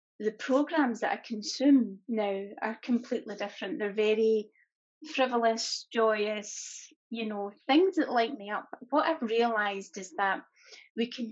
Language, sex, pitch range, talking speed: English, female, 205-245 Hz, 145 wpm